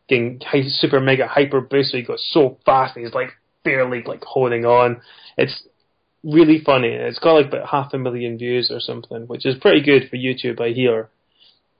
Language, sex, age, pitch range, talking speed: English, male, 20-39, 120-140 Hz, 190 wpm